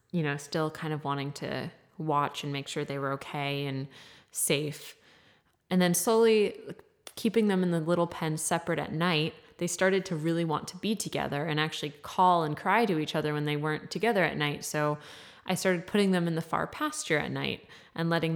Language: English